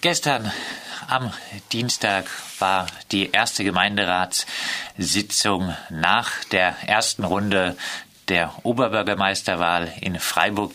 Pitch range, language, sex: 95-115 Hz, German, male